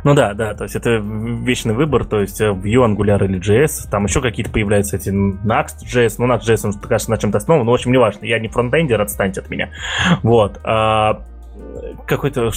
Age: 20-39